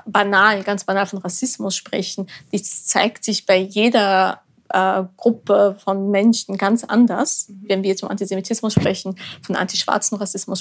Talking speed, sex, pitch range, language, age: 145 wpm, female, 190-215 Hz, German, 20-39